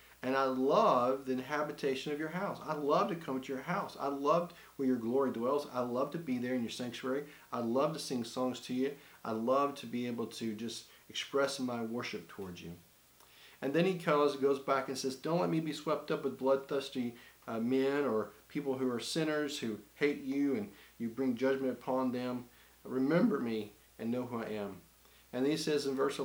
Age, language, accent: 40-59, English, American